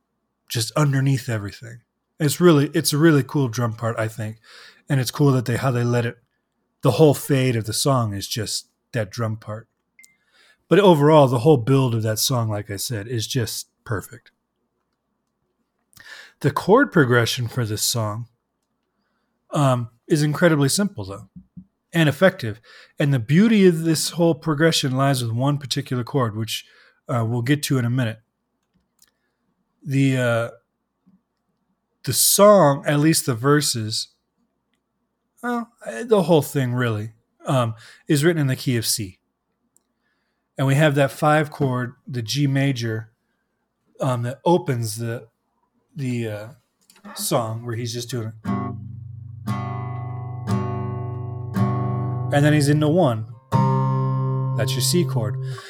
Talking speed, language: 140 wpm, English